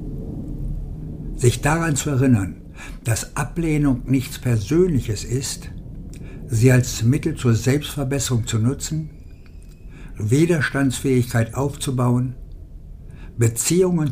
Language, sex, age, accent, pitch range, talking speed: German, male, 60-79, German, 105-135 Hz, 80 wpm